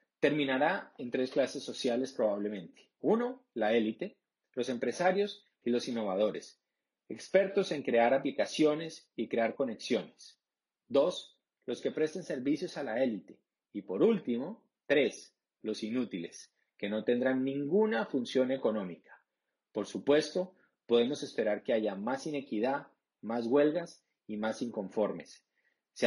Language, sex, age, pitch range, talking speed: Spanish, male, 40-59, 120-175 Hz, 125 wpm